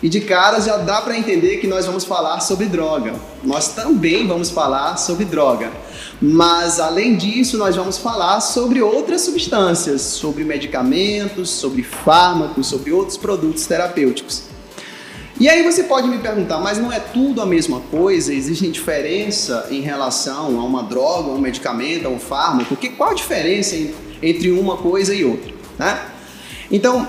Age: 20-39